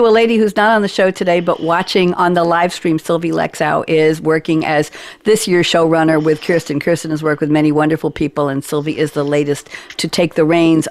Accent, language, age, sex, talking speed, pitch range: American, English, 60-79, female, 220 wpm, 165-215 Hz